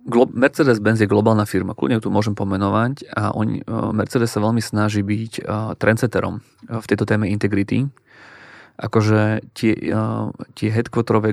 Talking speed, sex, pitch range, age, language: 125 wpm, male, 105-115 Hz, 30-49, Slovak